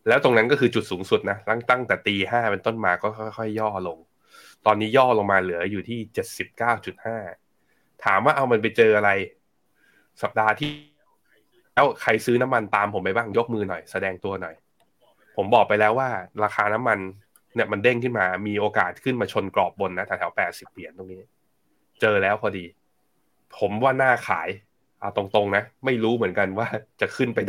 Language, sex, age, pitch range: Thai, male, 20-39, 95-120 Hz